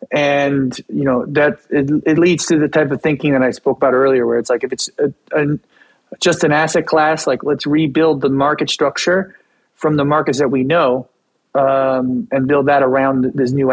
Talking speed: 205 wpm